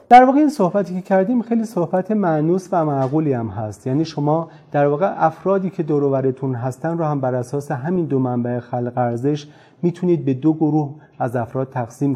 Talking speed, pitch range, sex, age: 185 wpm, 125-155 Hz, male, 30-49